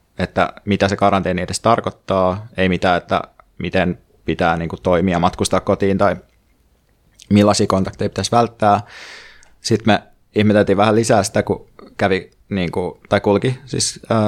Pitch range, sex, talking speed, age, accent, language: 95-105 Hz, male, 145 wpm, 20-39, native, Finnish